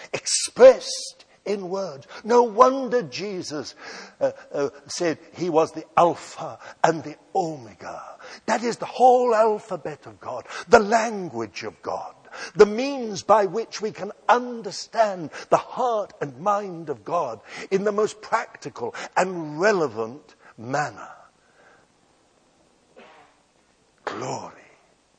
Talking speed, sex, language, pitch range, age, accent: 115 wpm, male, English, 150-215 Hz, 60-79, British